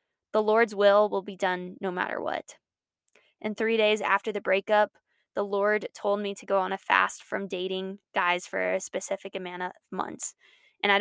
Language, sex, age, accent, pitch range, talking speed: English, female, 10-29, American, 190-210 Hz, 190 wpm